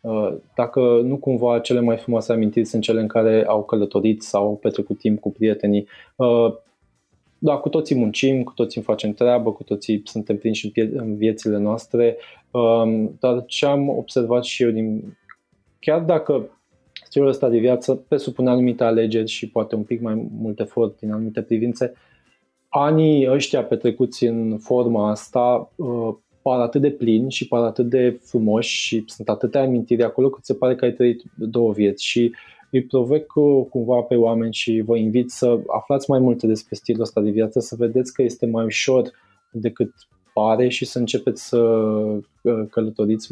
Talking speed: 165 wpm